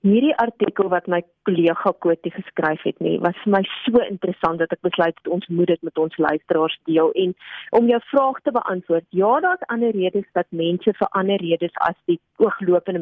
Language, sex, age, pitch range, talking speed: German, female, 30-49, 180-235 Hz, 195 wpm